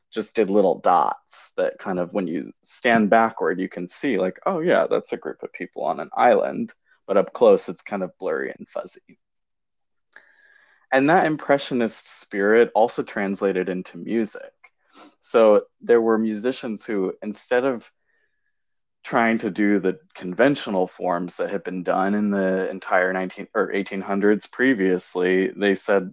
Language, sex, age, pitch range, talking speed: English, male, 20-39, 95-120 Hz, 155 wpm